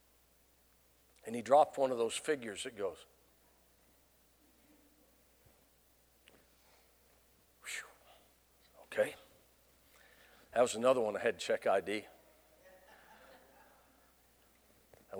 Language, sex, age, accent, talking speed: English, male, 60-79, American, 80 wpm